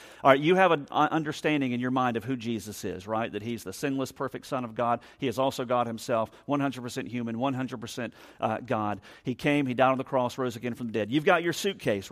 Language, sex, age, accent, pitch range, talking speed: English, male, 40-59, American, 120-170 Hz, 240 wpm